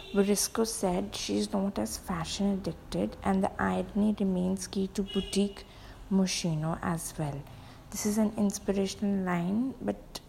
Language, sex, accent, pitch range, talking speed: Italian, female, Indian, 180-205 Hz, 140 wpm